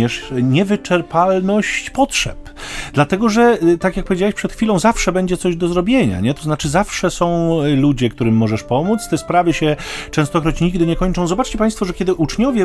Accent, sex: native, male